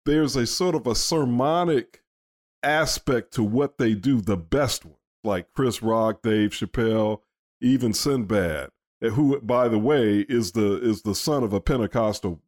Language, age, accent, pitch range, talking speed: English, 50-69, American, 105-150 Hz, 160 wpm